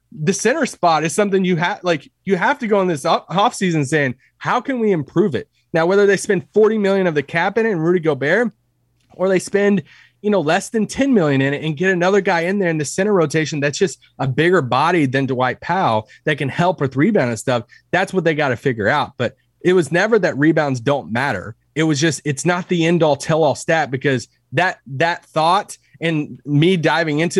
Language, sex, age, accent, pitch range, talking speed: English, male, 30-49, American, 140-195 Hz, 230 wpm